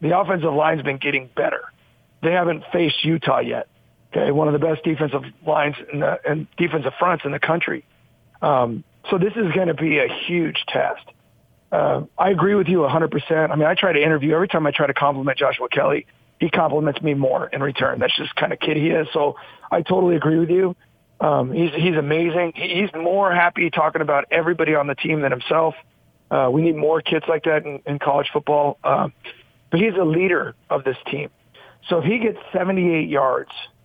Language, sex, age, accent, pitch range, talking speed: English, male, 40-59, American, 145-175 Hz, 205 wpm